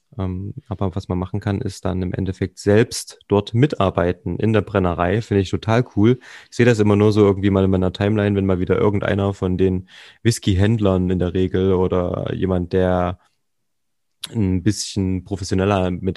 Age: 30-49